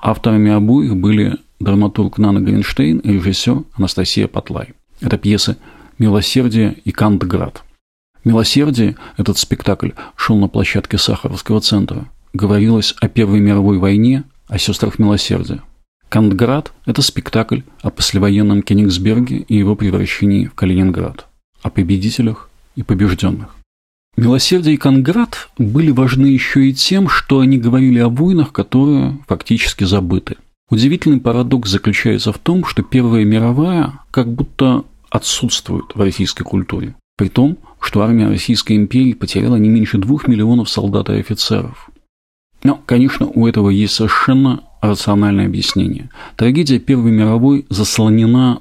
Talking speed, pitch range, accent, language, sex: 125 wpm, 100-125 Hz, native, Russian, male